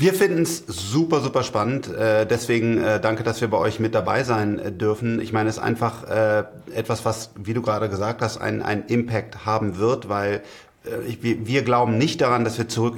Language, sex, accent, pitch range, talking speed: German, male, German, 110-120 Hz, 195 wpm